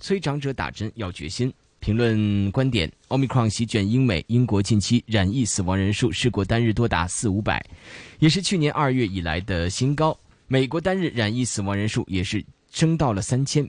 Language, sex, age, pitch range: Chinese, male, 20-39, 100-145 Hz